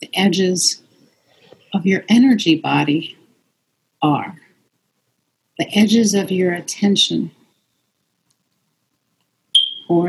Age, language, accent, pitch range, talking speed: 50-69, English, American, 170-215 Hz, 75 wpm